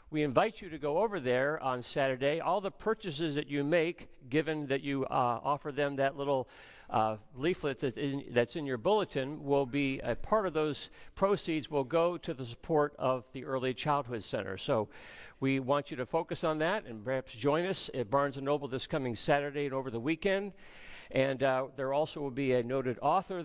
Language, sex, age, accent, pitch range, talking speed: English, male, 50-69, American, 120-155 Hz, 200 wpm